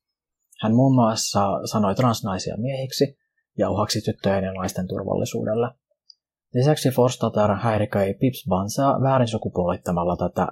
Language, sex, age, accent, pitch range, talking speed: Finnish, male, 30-49, native, 95-125 Hz, 105 wpm